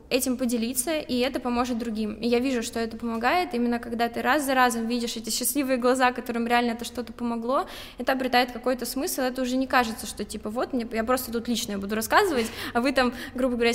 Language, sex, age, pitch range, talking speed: Russian, female, 20-39, 225-260 Hz, 220 wpm